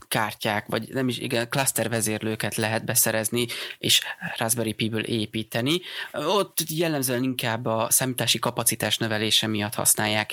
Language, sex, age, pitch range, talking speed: Hungarian, male, 20-39, 110-125 Hz, 120 wpm